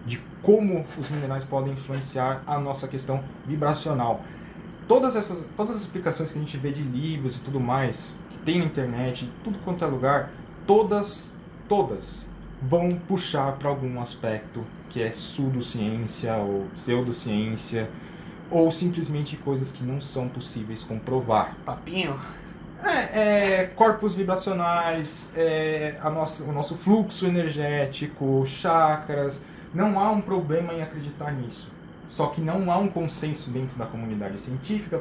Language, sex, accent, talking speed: Portuguese, male, Brazilian, 135 wpm